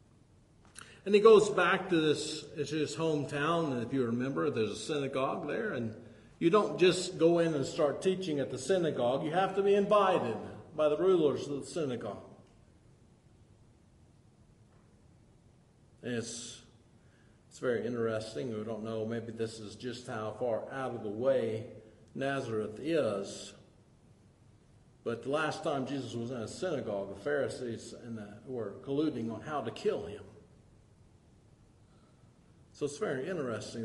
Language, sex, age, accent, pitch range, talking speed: English, male, 50-69, American, 110-145 Hz, 145 wpm